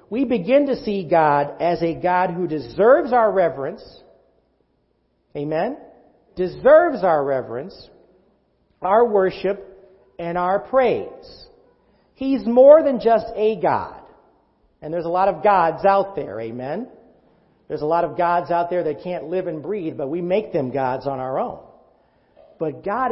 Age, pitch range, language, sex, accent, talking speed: 50-69, 155-220 Hz, English, male, American, 150 wpm